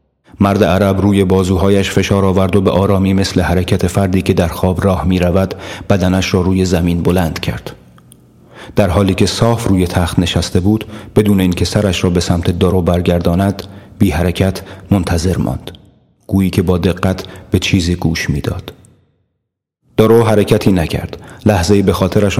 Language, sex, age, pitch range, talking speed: Persian, male, 30-49, 85-100 Hz, 155 wpm